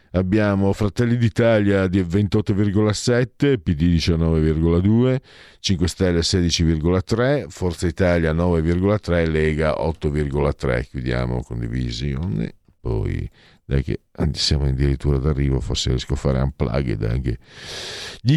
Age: 50-69